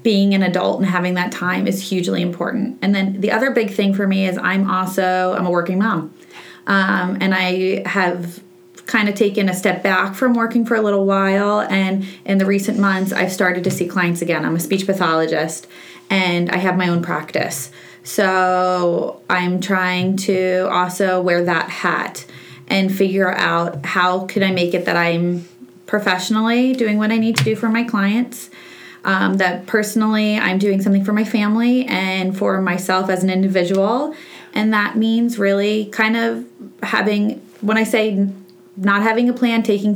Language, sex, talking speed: English, female, 180 wpm